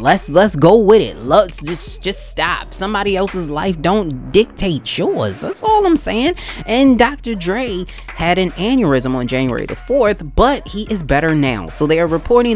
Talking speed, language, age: 180 wpm, English, 20-39